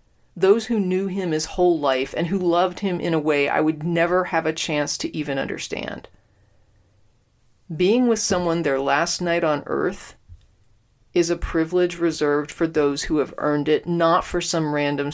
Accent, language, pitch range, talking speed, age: American, English, 145-190 Hz, 180 wpm, 40-59